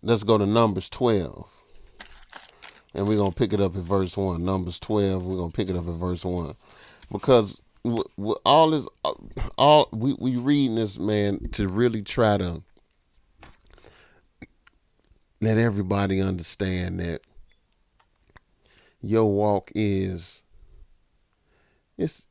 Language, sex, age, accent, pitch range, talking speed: English, male, 30-49, American, 95-110 Hz, 135 wpm